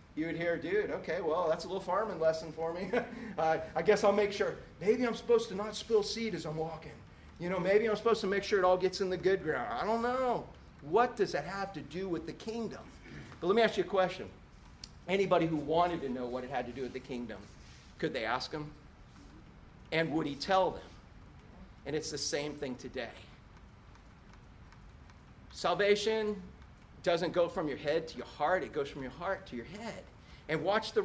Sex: male